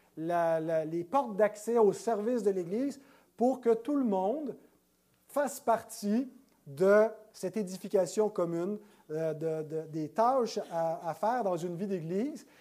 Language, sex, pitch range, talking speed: French, male, 170-225 Hz, 150 wpm